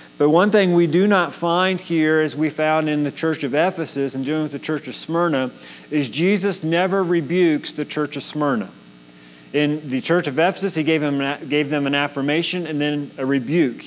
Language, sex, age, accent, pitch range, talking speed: English, male, 40-59, American, 150-180 Hz, 195 wpm